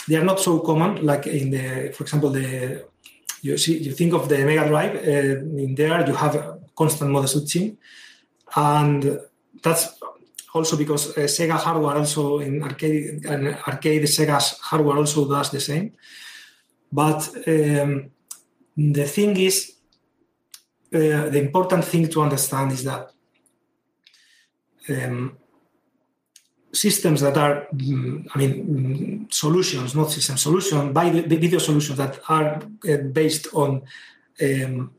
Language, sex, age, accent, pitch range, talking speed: English, male, 30-49, Spanish, 140-160 Hz, 135 wpm